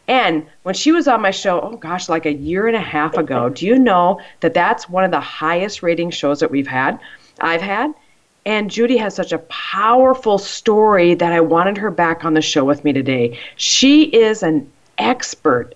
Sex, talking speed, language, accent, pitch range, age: female, 205 wpm, English, American, 155-225 Hz, 40-59